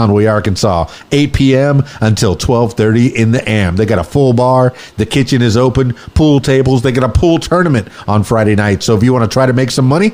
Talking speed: 225 wpm